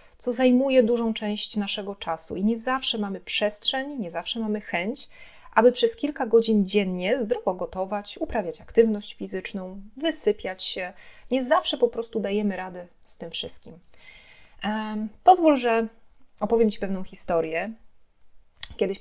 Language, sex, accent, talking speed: Polish, female, native, 135 wpm